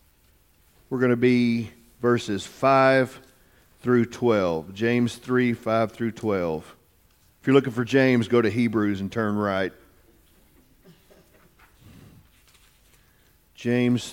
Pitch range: 115-160 Hz